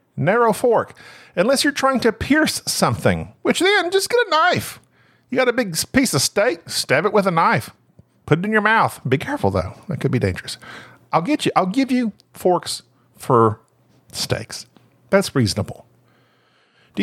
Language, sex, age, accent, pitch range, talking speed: English, male, 50-69, American, 140-235 Hz, 175 wpm